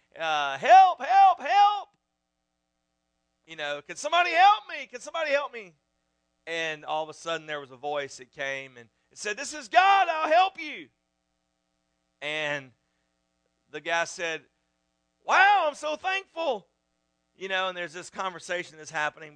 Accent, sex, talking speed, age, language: American, male, 150 wpm, 40-59, English